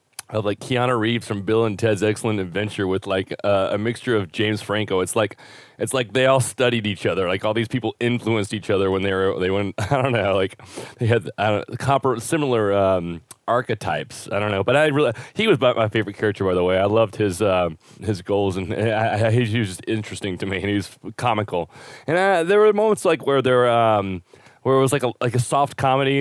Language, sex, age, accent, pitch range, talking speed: English, male, 30-49, American, 100-125 Hz, 230 wpm